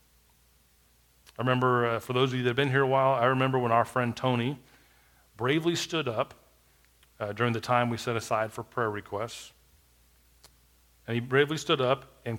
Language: English